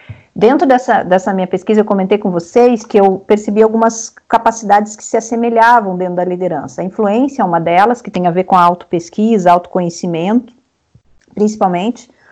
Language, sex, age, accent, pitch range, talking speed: Portuguese, female, 50-69, Brazilian, 195-245 Hz, 165 wpm